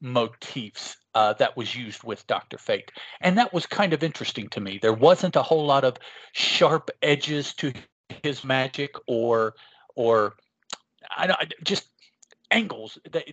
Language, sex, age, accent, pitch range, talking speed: English, male, 40-59, American, 115-150 Hz, 155 wpm